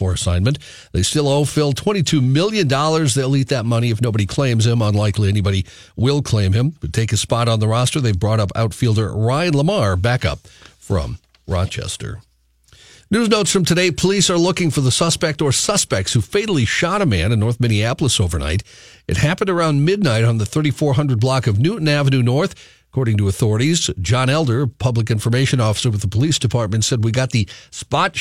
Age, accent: 50-69, American